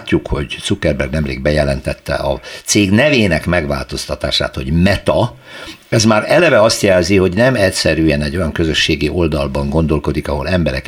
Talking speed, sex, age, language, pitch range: 145 wpm, male, 60-79, Hungarian, 75-110 Hz